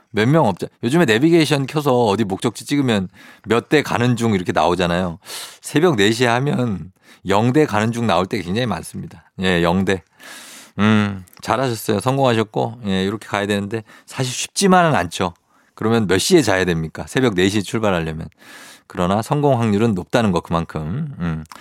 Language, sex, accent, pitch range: Korean, male, native, 95-130 Hz